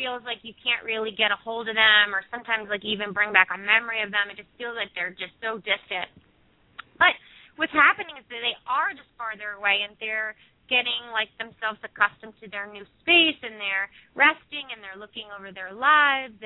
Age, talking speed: 30-49, 210 wpm